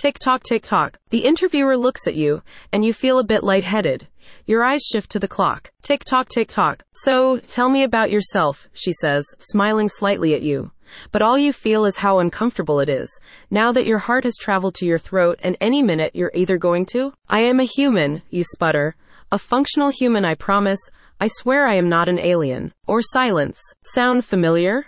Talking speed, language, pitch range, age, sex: 200 wpm, English, 175-250 Hz, 20-39, female